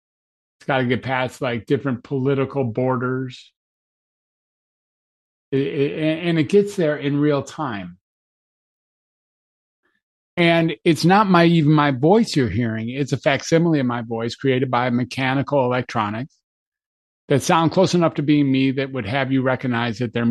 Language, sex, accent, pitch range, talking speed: English, male, American, 120-145 Hz, 140 wpm